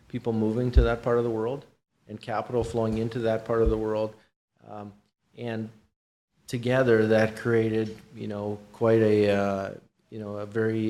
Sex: male